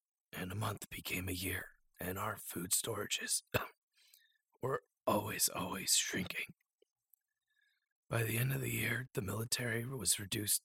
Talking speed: 135 wpm